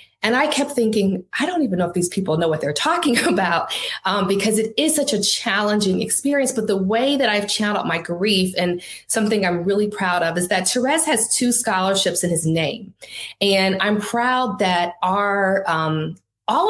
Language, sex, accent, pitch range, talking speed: English, female, American, 180-220 Hz, 195 wpm